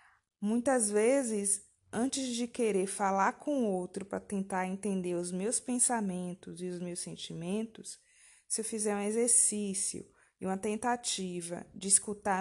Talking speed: 140 wpm